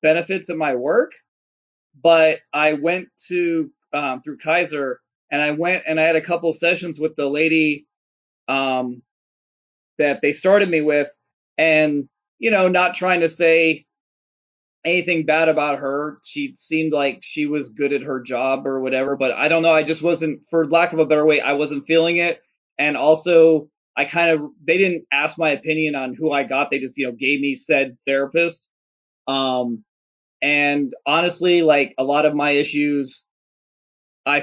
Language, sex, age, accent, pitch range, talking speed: English, male, 30-49, American, 140-165 Hz, 175 wpm